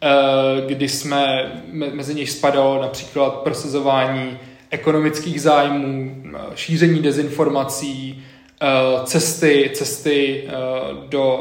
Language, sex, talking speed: Czech, male, 75 wpm